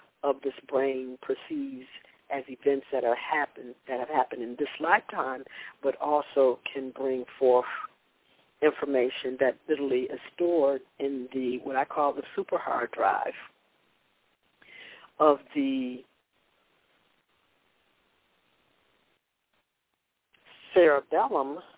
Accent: American